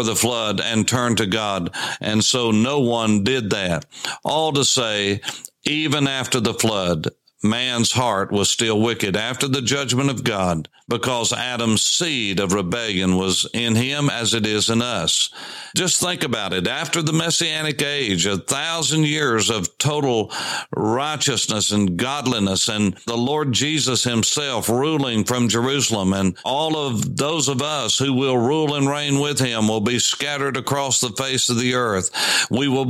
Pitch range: 110-140 Hz